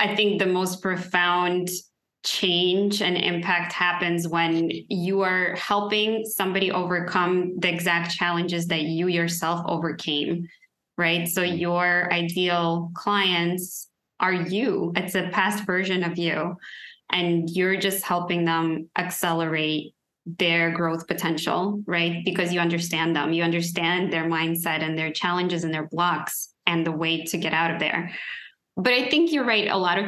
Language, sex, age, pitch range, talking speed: English, female, 20-39, 170-195 Hz, 150 wpm